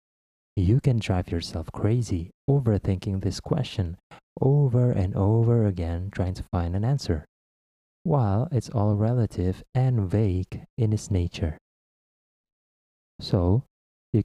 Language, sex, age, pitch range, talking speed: English, male, 20-39, 85-115 Hz, 120 wpm